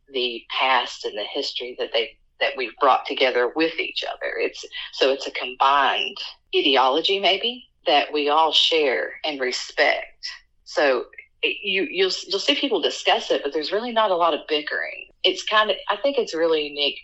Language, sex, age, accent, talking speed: English, female, 40-59, American, 185 wpm